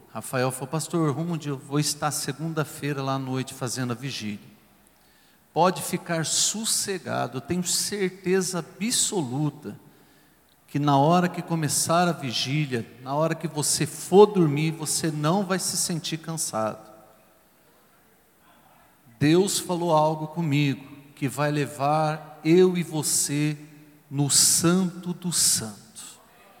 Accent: Brazilian